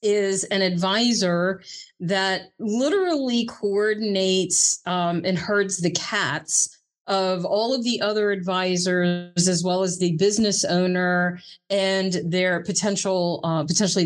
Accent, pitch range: American, 175-215 Hz